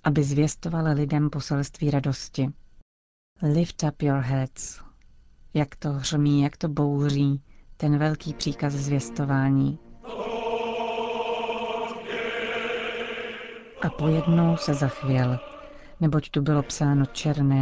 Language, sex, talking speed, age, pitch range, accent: Czech, female, 95 wpm, 40-59, 135-155 Hz, native